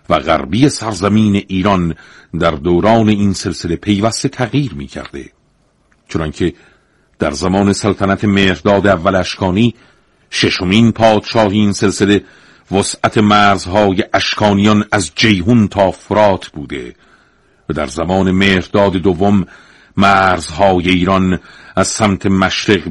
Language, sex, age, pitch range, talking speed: Persian, male, 50-69, 95-110 Hz, 105 wpm